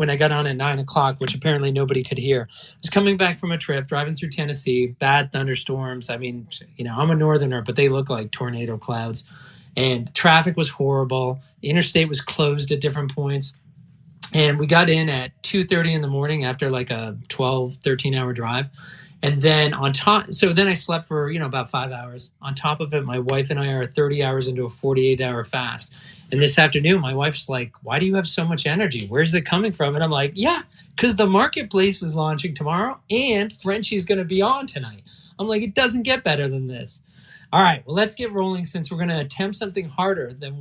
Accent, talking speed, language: American, 220 wpm, English